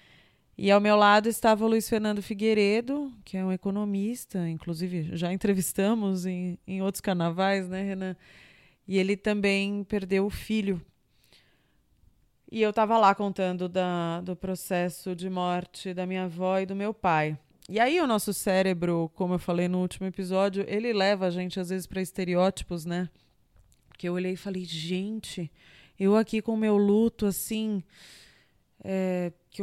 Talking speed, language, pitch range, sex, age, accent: 160 wpm, Portuguese, 180-215 Hz, female, 20-39, Brazilian